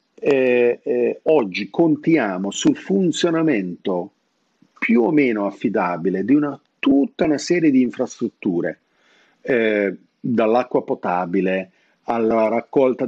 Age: 50-69